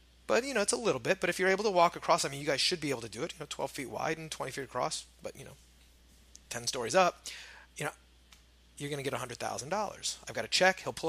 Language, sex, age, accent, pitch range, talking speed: English, male, 30-49, American, 110-160 Hz, 280 wpm